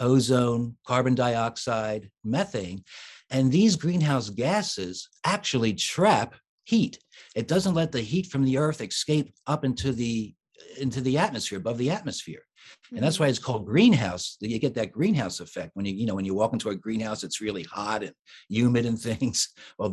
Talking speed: 180 wpm